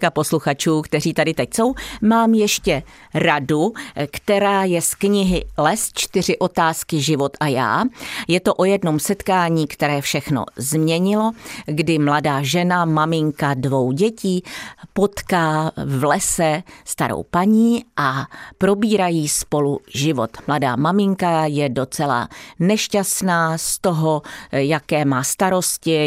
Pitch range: 145-185 Hz